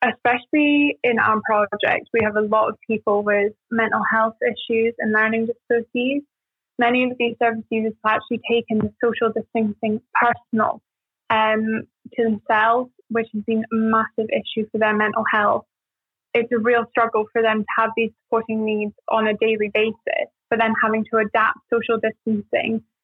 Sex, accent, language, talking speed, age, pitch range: female, British, English, 165 wpm, 20-39, 220-235 Hz